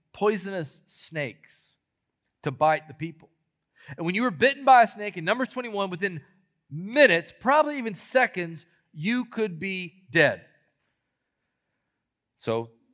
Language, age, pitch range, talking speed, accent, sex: English, 40-59, 170-250 Hz, 125 wpm, American, male